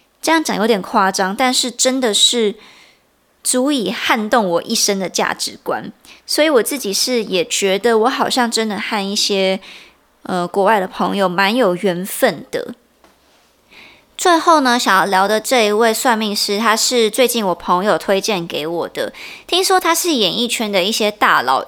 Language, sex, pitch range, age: Chinese, male, 195-250 Hz, 20-39